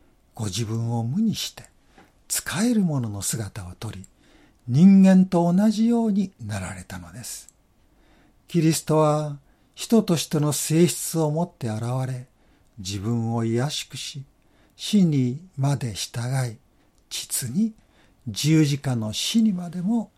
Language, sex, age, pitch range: Japanese, male, 60-79, 115-180 Hz